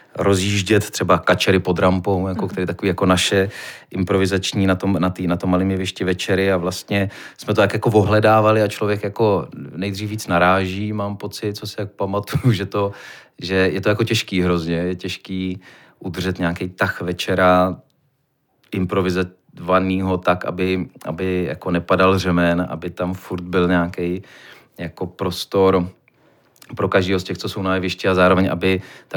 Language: Czech